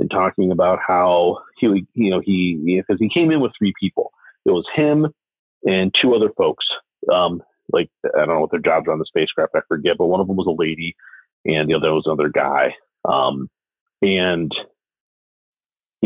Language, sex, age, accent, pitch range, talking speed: English, male, 40-59, American, 95-150 Hz, 195 wpm